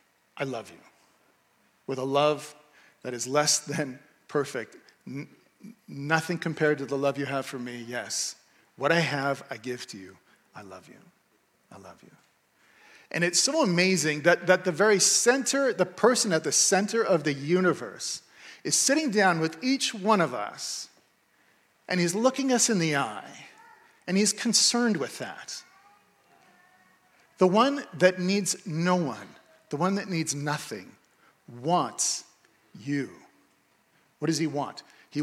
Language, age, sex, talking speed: English, 40-59, male, 150 wpm